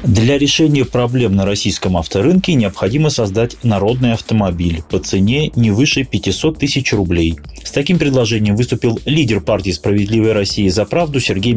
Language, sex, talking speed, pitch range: Russian, male, 145 wpm, 95-135 Hz